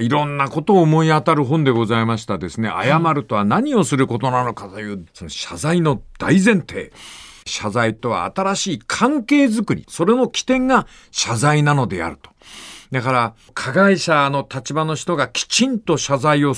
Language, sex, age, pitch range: Japanese, male, 50-69, 140-205 Hz